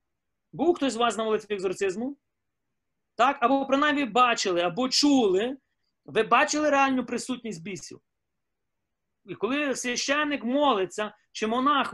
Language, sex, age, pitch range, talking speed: Ukrainian, male, 30-49, 210-270 Hz, 120 wpm